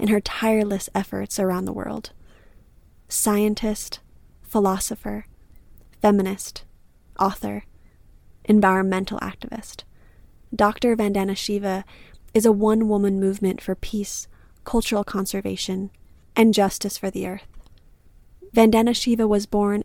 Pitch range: 190-215 Hz